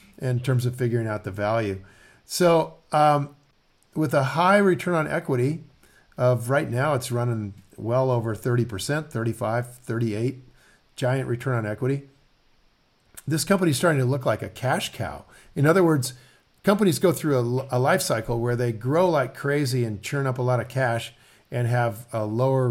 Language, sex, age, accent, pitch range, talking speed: English, male, 50-69, American, 115-145 Hz, 170 wpm